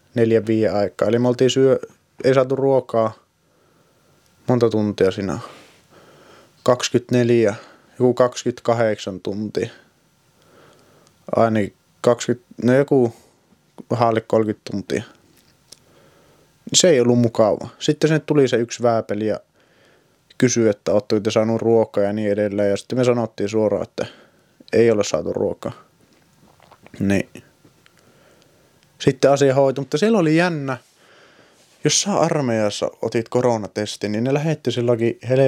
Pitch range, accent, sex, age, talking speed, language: 110-125 Hz, native, male, 30-49, 115 wpm, Finnish